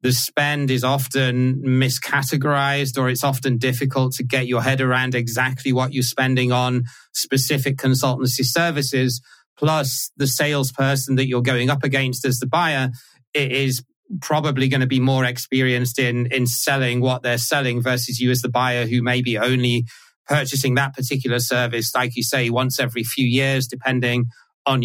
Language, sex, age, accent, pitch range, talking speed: English, male, 30-49, British, 125-145 Hz, 165 wpm